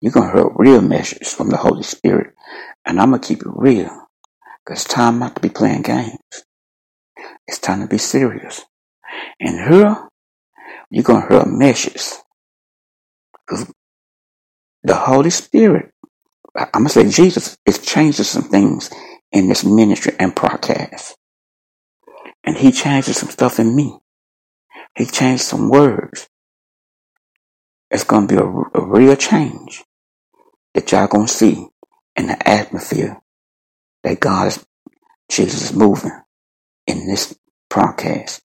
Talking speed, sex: 145 wpm, male